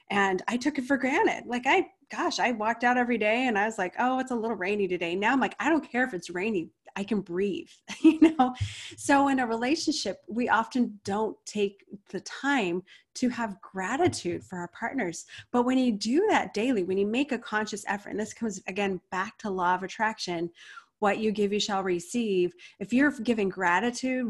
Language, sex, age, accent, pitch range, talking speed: English, female, 30-49, American, 185-245 Hz, 210 wpm